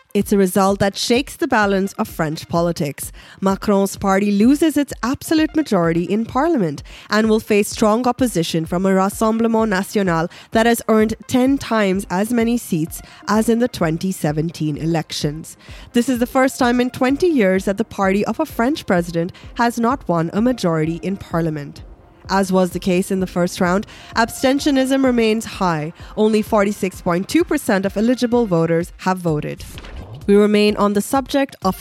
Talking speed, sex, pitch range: 160 wpm, female, 180-240 Hz